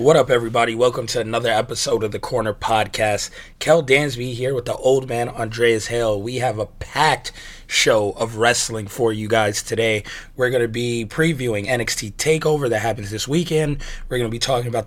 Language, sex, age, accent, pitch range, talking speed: English, male, 20-39, American, 110-130 Hz, 195 wpm